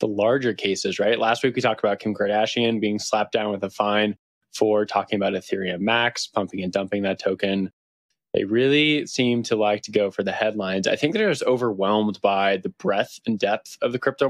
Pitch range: 100-115 Hz